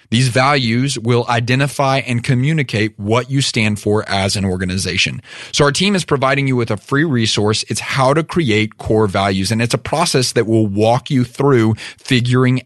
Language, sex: English, male